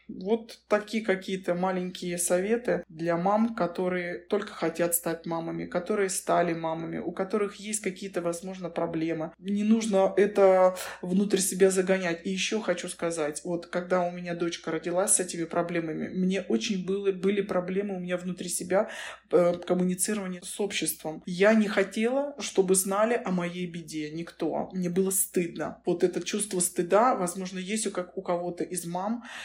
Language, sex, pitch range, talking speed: Russian, male, 175-200 Hz, 150 wpm